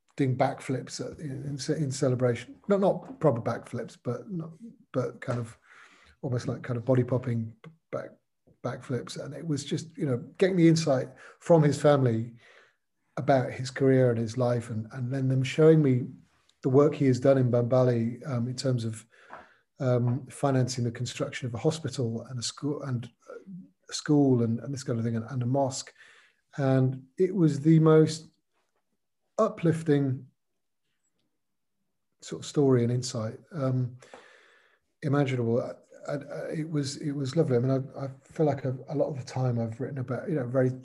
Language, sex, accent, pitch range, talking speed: English, male, British, 120-145 Hz, 165 wpm